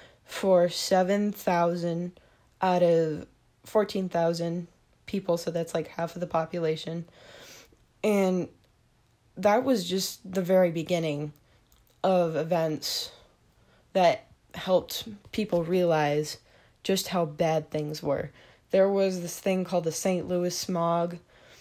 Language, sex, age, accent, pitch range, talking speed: English, female, 20-39, American, 155-185 Hz, 110 wpm